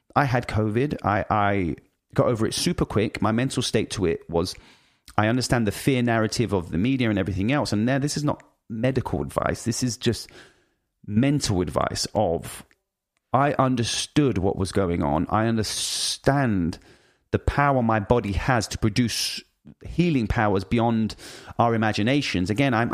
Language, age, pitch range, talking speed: English, 30-49, 100-125 Hz, 160 wpm